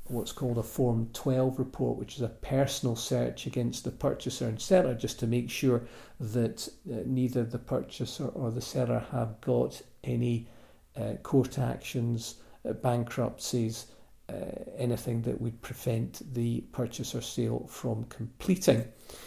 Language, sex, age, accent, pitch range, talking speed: English, male, 50-69, British, 120-135 Hz, 145 wpm